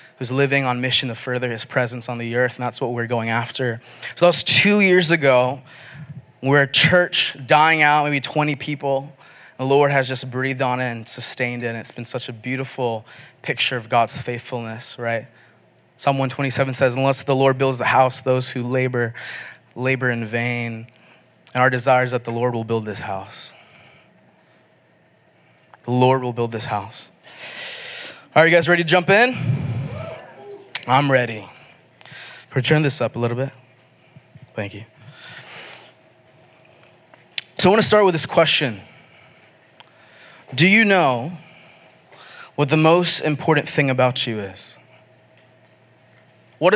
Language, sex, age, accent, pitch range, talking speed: English, male, 20-39, American, 125-155 Hz, 160 wpm